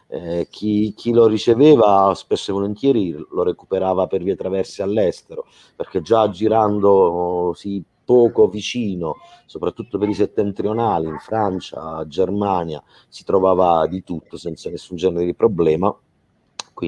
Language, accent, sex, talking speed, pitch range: Italian, native, male, 130 wpm, 85-100 Hz